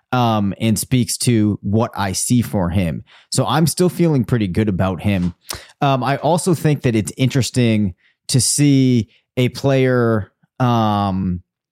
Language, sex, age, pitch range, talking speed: English, male, 30-49, 110-135 Hz, 150 wpm